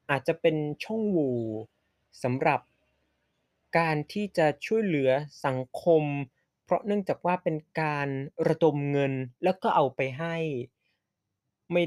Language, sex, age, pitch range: Thai, male, 20-39, 130-160 Hz